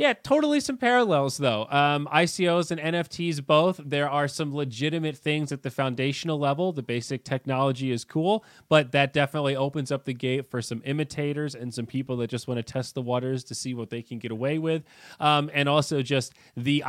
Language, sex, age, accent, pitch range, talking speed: English, male, 30-49, American, 125-150 Hz, 205 wpm